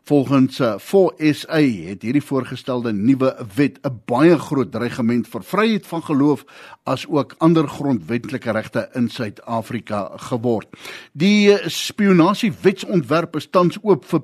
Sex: male